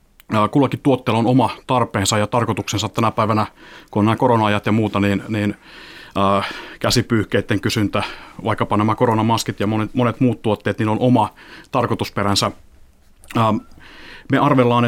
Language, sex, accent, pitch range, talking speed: Finnish, male, native, 105-125 Hz, 135 wpm